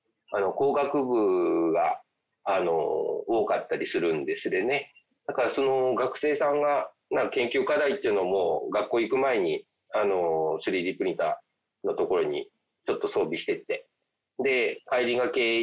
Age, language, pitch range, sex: 40-59, English, 270-410 Hz, male